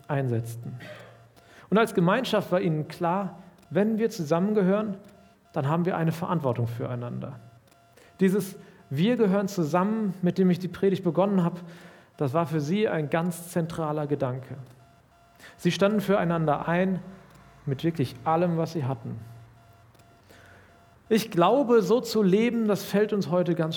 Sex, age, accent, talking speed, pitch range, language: male, 40-59, German, 140 wpm, 135-195 Hz, German